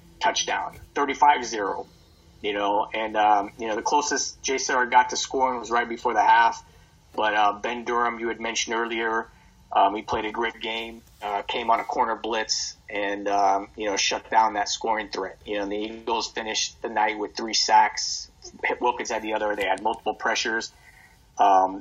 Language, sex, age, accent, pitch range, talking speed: English, male, 30-49, American, 105-115 Hz, 190 wpm